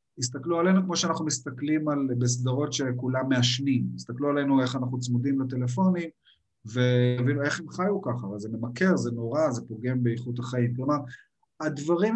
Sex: male